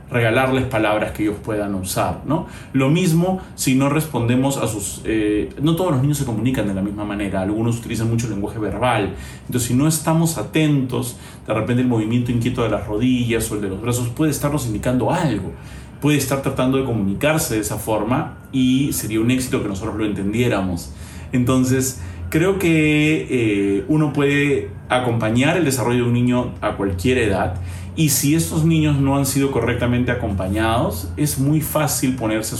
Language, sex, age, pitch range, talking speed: Spanish, male, 30-49, 105-135 Hz, 180 wpm